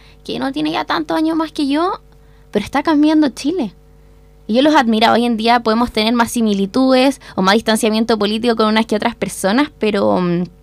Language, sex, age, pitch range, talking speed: Spanish, female, 10-29, 215-275 Hz, 200 wpm